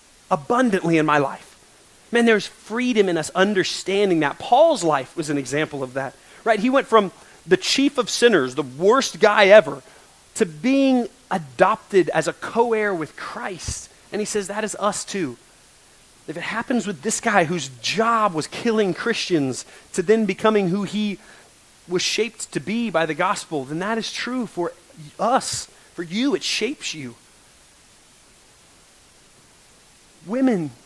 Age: 30-49